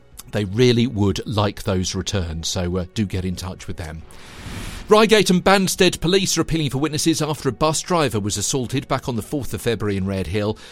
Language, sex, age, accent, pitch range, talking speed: English, male, 50-69, British, 100-145 Hz, 205 wpm